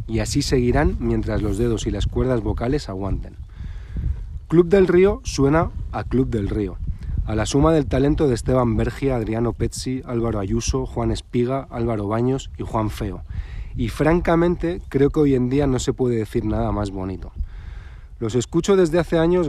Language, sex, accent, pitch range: Spanish, male, Spanish, 100-135 Hz